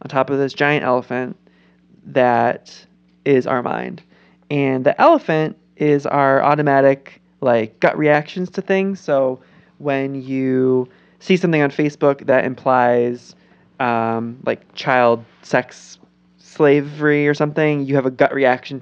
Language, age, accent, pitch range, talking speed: English, 20-39, American, 120-145 Hz, 135 wpm